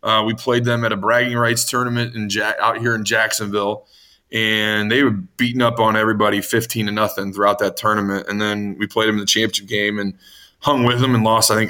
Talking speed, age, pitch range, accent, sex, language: 230 wpm, 20-39, 100-120 Hz, American, male, English